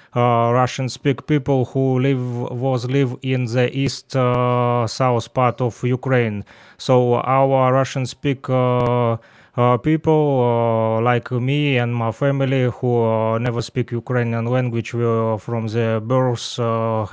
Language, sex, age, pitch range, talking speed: Russian, male, 20-39, 115-130 Hz, 135 wpm